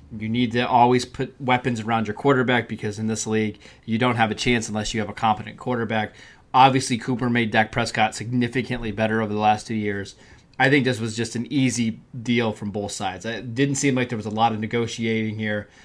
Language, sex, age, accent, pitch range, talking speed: English, male, 20-39, American, 110-135 Hz, 220 wpm